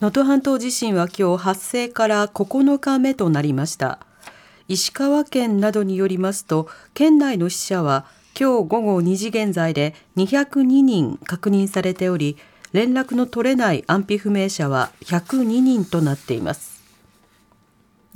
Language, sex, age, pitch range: Japanese, female, 40-59, 170-255 Hz